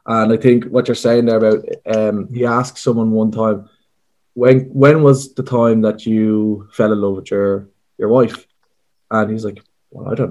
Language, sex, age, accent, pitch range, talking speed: English, male, 20-39, Irish, 110-125 Hz, 200 wpm